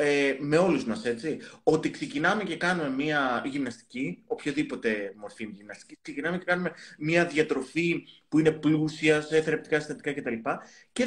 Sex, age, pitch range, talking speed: male, 30-49, 135-195 Hz, 140 wpm